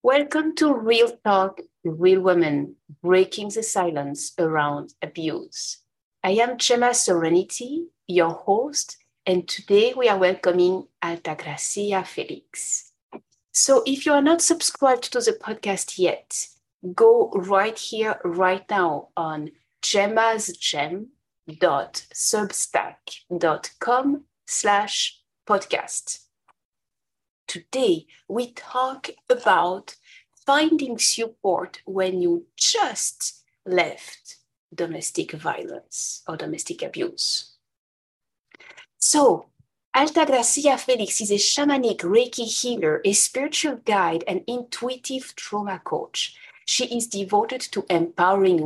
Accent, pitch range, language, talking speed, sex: French, 185-270 Hz, English, 95 wpm, female